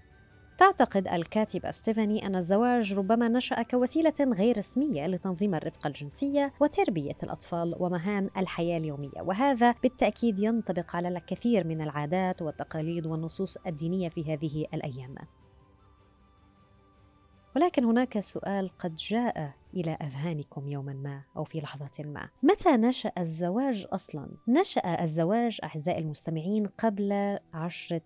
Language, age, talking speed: Arabic, 20-39, 115 wpm